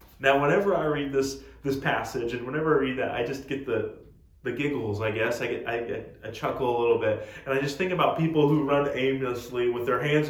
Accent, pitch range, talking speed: American, 115-150 Hz, 240 wpm